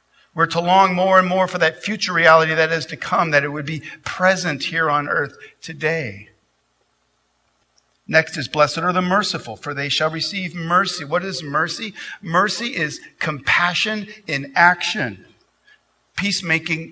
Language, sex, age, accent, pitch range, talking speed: English, male, 50-69, American, 120-170 Hz, 155 wpm